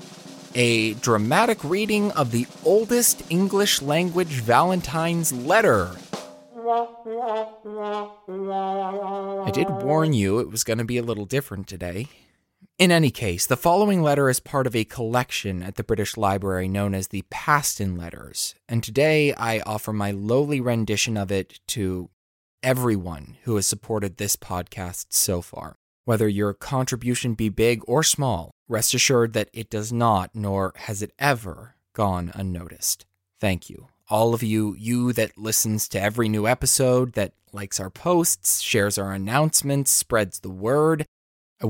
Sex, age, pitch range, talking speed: male, 20-39, 100-140 Hz, 145 wpm